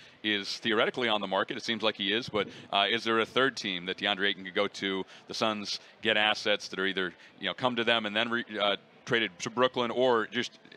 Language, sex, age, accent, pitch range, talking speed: English, male, 40-59, American, 105-120 Hz, 245 wpm